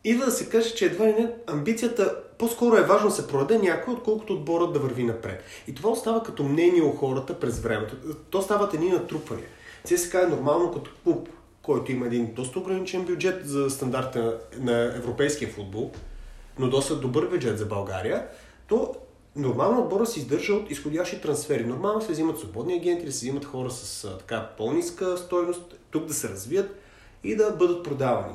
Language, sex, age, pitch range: Bulgarian, male, 30-49, 125-180 Hz